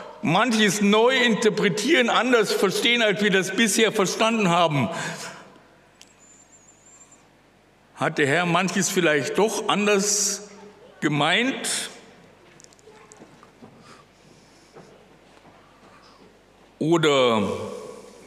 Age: 60-79